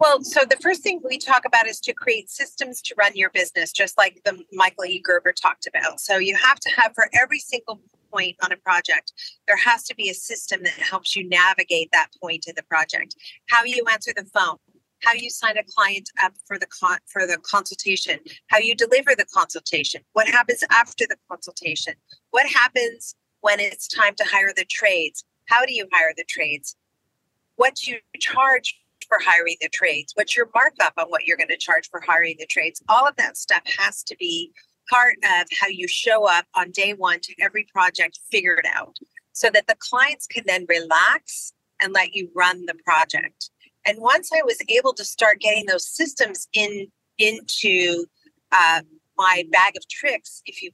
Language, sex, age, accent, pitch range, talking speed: English, female, 40-59, American, 185-305 Hz, 195 wpm